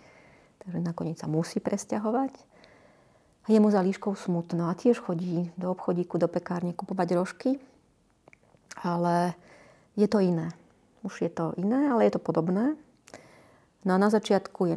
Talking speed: 150 wpm